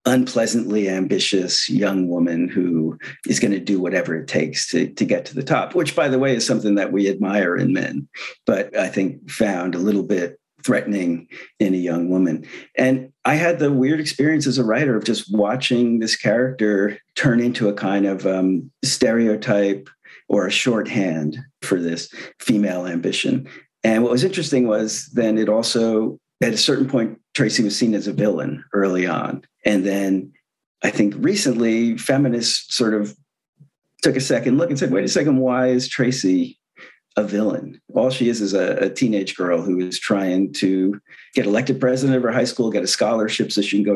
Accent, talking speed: American, 185 wpm